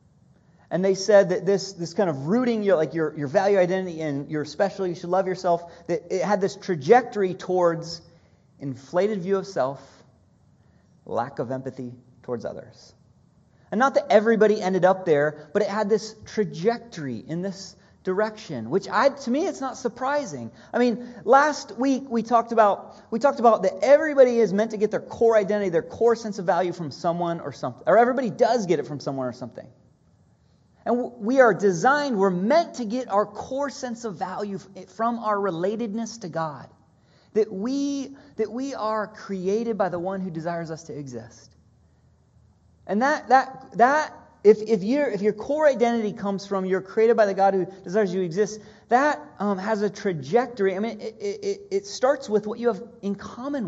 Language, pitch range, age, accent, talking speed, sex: English, 180-235 Hz, 30-49, American, 190 wpm, male